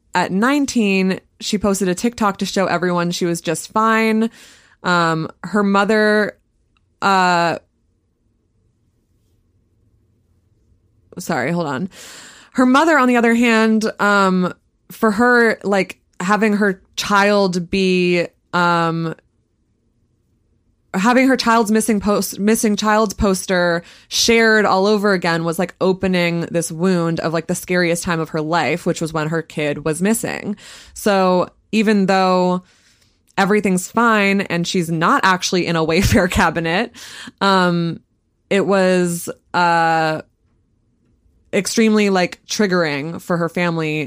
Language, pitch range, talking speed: English, 165-205 Hz, 120 wpm